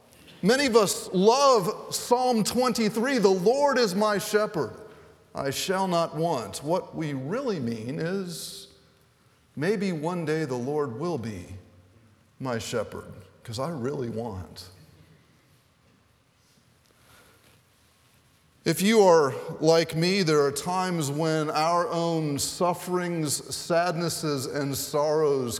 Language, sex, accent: English, male, American